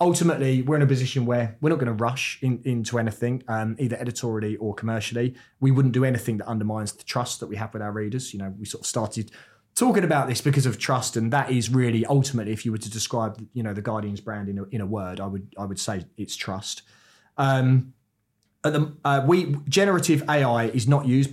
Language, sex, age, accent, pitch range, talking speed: English, male, 30-49, British, 110-130 Hz, 230 wpm